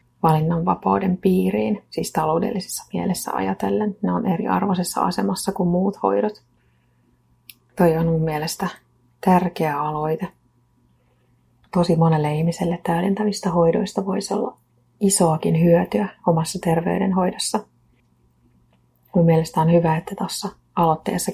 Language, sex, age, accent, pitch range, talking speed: Finnish, female, 30-49, native, 120-185 Hz, 105 wpm